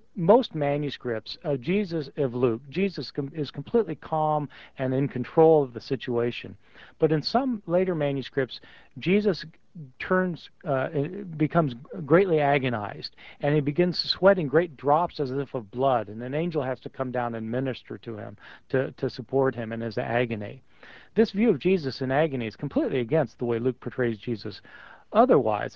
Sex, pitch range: male, 125-160 Hz